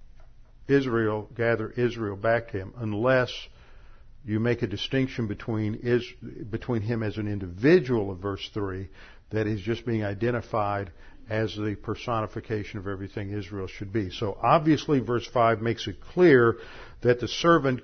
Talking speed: 150 wpm